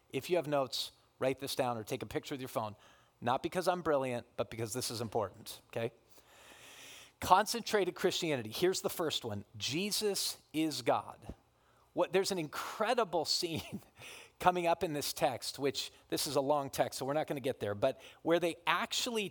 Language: English